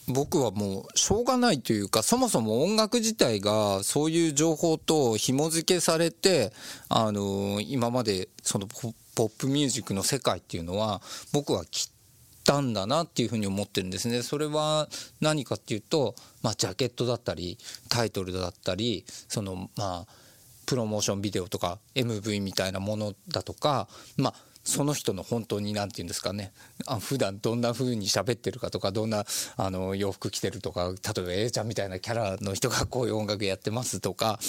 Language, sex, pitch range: Japanese, male, 100-155 Hz